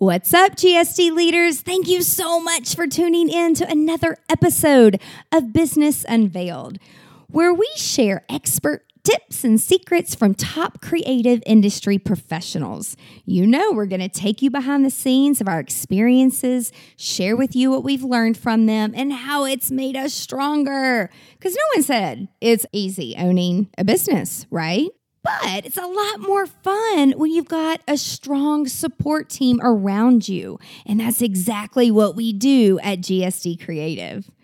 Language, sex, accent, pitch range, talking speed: English, female, American, 190-290 Hz, 155 wpm